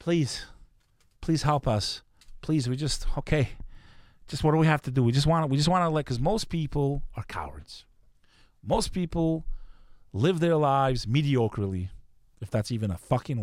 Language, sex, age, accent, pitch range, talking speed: English, male, 30-49, American, 100-135 Hz, 175 wpm